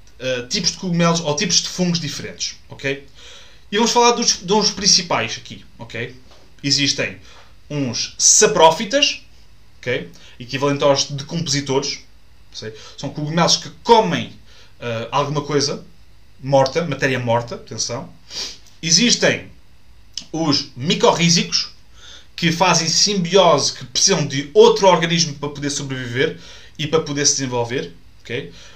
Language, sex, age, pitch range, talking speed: Portuguese, male, 20-39, 125-165 Hz, 120 wpm